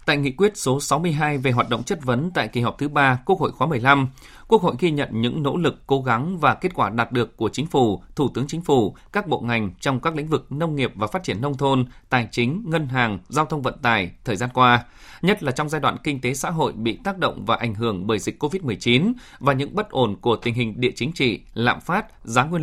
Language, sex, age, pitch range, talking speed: Vietnamese, male, 20-39, 120-155 Hz, 255 wpm